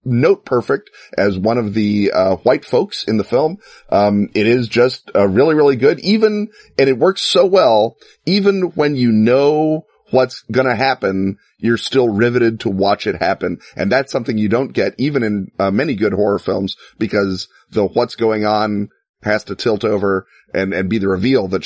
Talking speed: 195 wpm